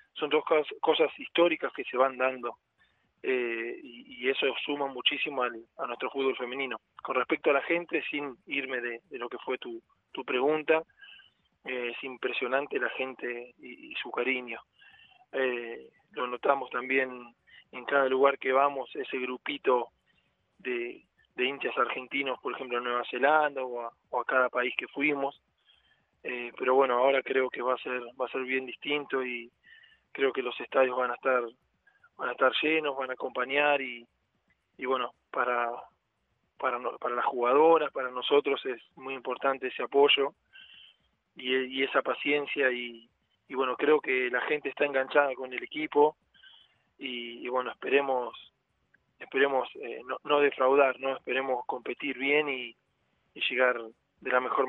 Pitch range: 125-160 Hz